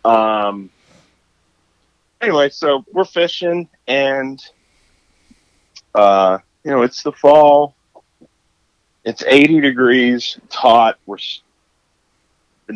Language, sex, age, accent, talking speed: English, male, 40-59, American, 85 wpm